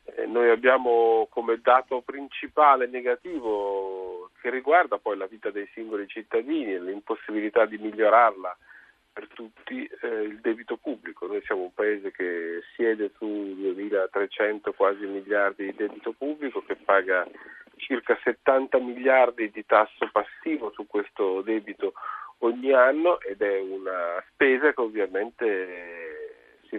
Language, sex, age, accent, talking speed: Italian, male, 40-59, native, 130 wpm